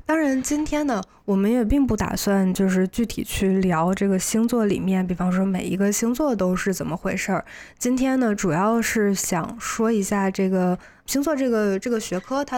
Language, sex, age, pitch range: Chinese, female, 20-39, 190-240 Hz